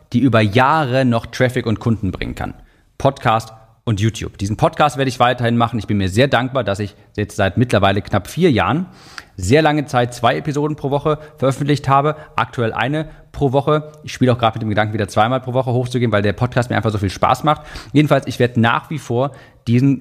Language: German